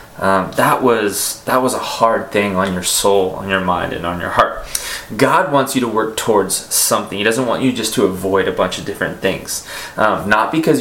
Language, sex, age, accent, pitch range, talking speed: English, male, 20-39, American, 105-135 Hz, 220 wpm